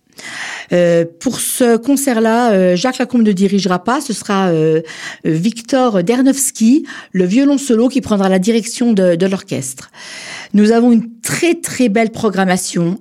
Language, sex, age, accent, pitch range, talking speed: French, female, 50-69, French, 180-235 Hz, 150 wpm